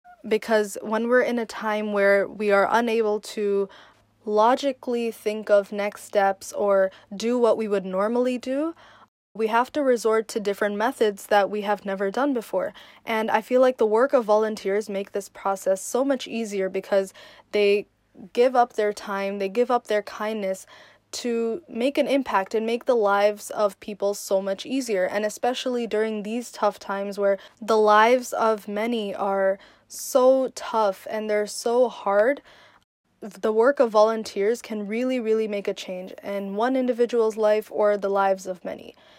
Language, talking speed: English, 170 wpm